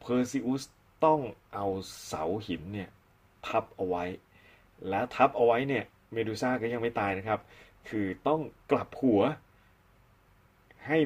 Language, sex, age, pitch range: Thai, male, 30-49, 95-120 Hz